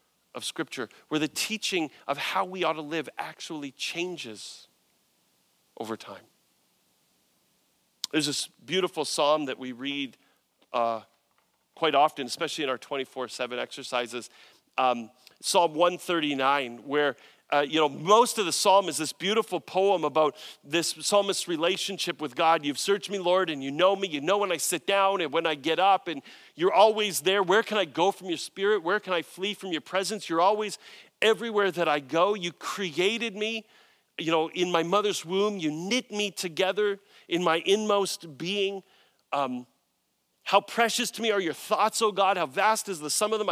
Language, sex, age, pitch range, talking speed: English, male, 40-59, 160-210 Hz, 180 wpm